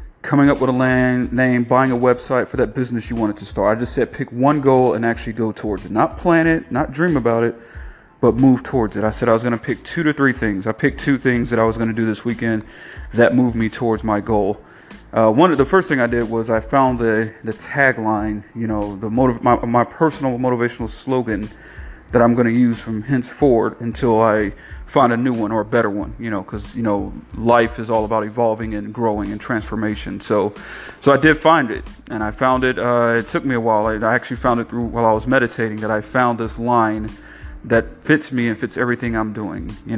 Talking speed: 240 wpm